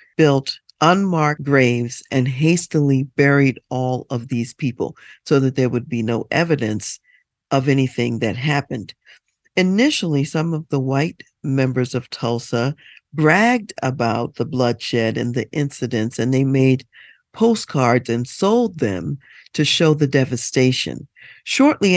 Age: 50-69